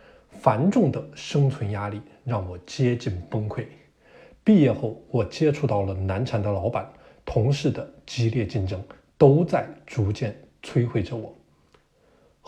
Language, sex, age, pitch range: Chinese, male, 20-39, 110-150 Hz